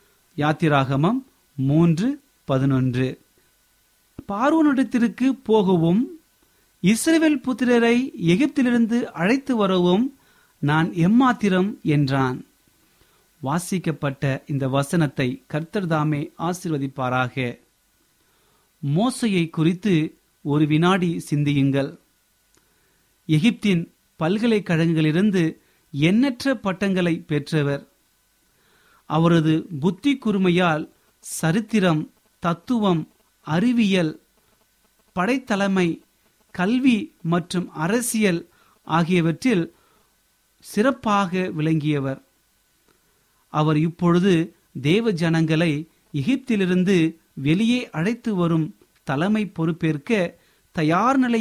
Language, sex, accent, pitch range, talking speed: Tamil, male, native, 155-215 Hz, 60 wpm